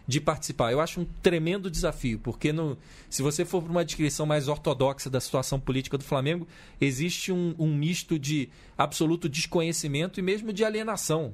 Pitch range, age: 140-175 Hz, 40-59